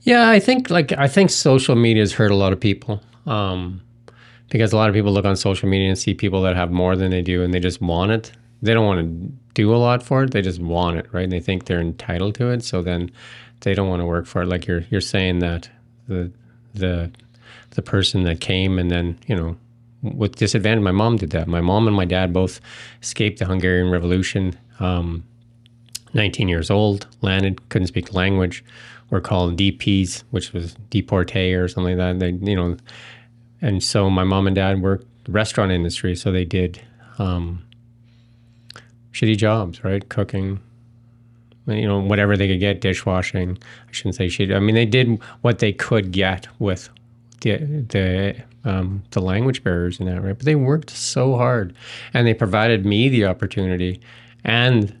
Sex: male